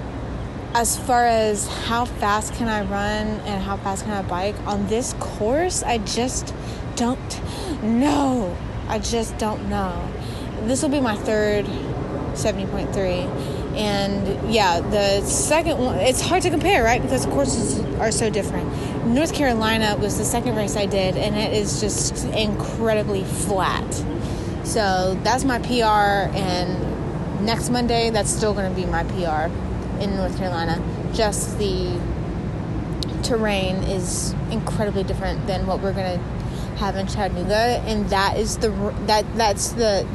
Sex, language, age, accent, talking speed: female, English, 20-39, American, 150 wpm